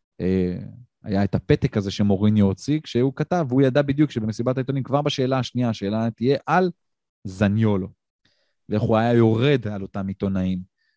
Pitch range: 100-130 Hz